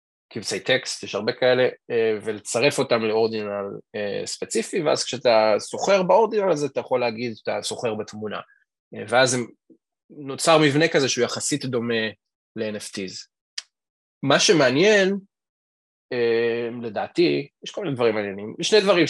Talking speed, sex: 125 wpm, male